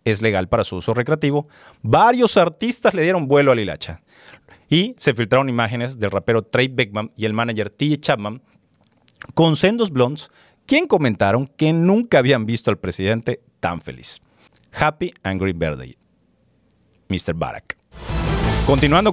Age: 40-59